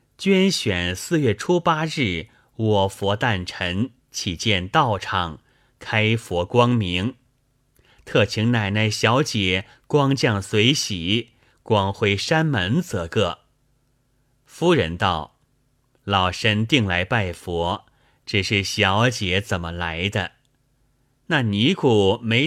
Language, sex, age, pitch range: Chinese, male, 30-49, 100-135 Hz